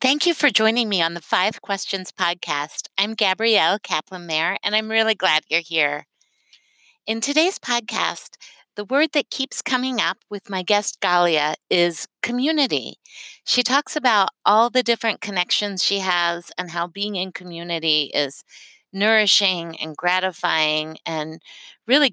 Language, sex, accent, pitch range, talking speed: English, female, American, 165-215 Hz, 145 wpm